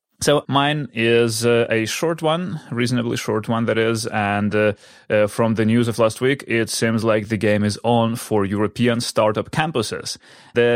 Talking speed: 185 wpm